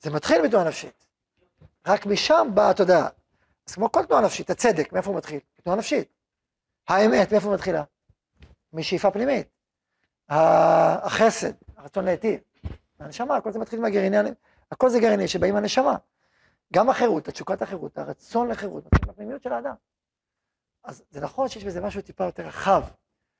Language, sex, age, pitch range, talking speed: Hebrew, male, 40-59, 185-235 Hz, 145 wpm